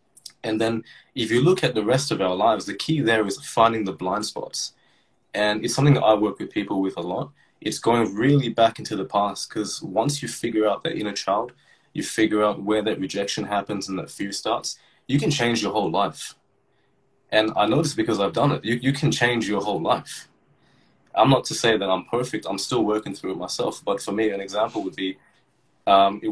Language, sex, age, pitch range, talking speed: English, male, 20-39, 105-135 Hz, 220 wpm